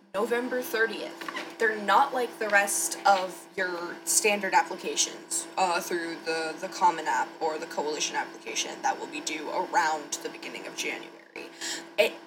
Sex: female